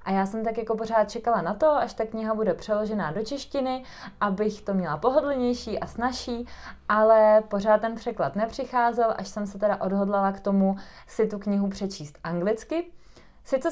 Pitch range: 195-225 Hz